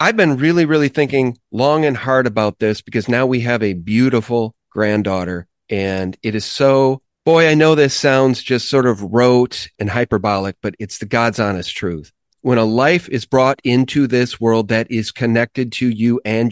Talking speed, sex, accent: 190 wpm, male, American